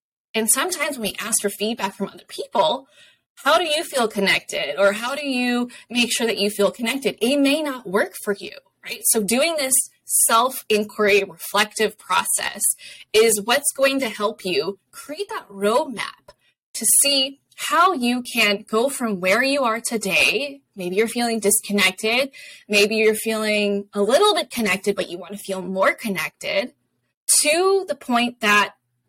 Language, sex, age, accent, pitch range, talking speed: English, female, 10-29, American, 200-265 Hz, 165 wpm